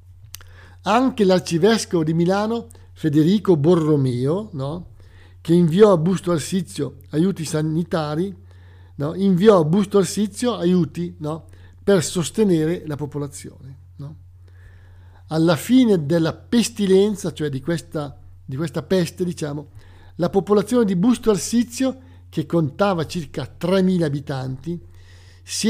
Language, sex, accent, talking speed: Italian, male, native, 110 wpm